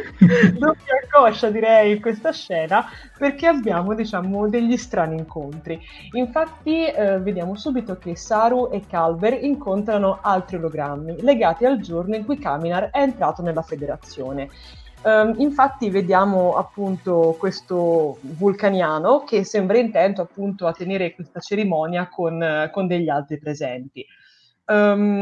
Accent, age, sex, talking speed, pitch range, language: native, 20-39, female, 125 wpm, 170-220 Hz, Italian